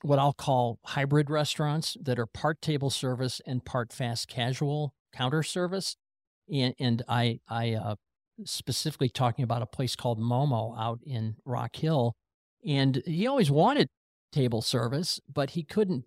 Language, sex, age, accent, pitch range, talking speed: English, male, 50-69, American, 115-145 Hz, 155 wpm